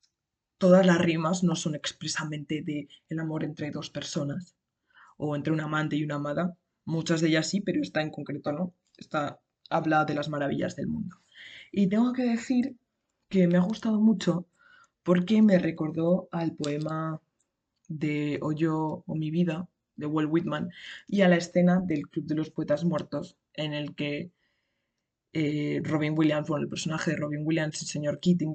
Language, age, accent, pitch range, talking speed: Spanish, 20-39, Spanish, 155-180 Hz, 170 wpm